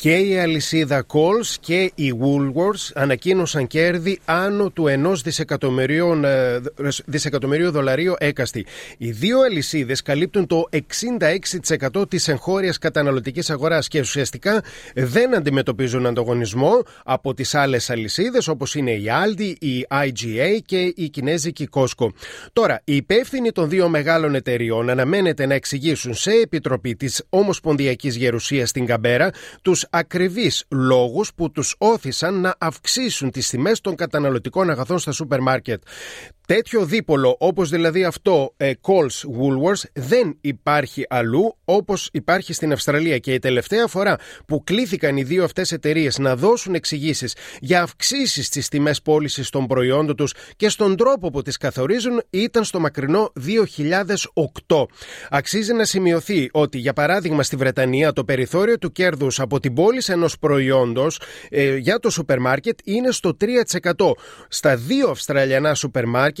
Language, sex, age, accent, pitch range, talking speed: Greek, male, 30-49, native, 135-185 Hz, 135 wpm